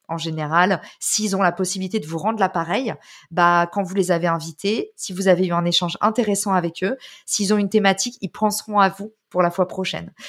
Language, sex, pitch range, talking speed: French, female, 185-220 Hz, 215 wpm